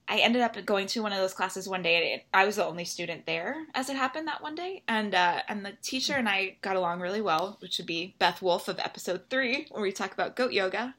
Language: English